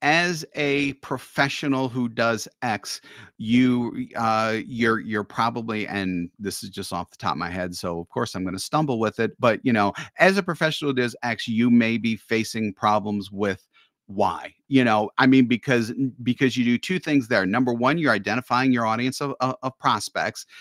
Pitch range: 105-130 Hz